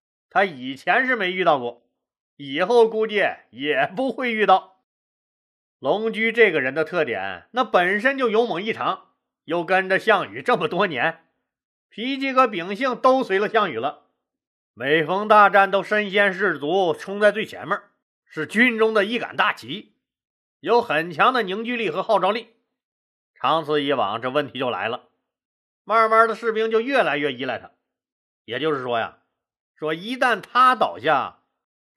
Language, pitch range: Chinese, 185-245 Hz